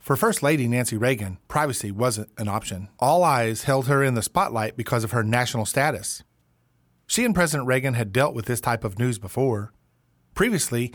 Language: English